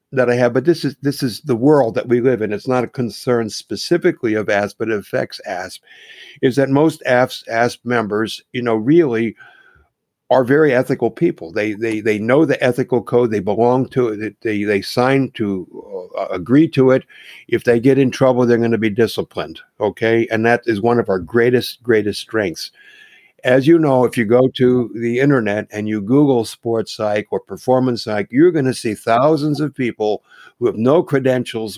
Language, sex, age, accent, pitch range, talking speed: English, male, 60-79, American, 110-135 Hz, 195 wpm